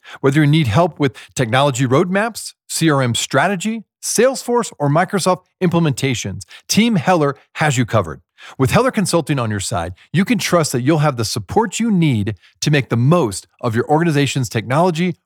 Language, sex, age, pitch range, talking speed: English, male, 40-59, 120-180 Hz, 165 wpm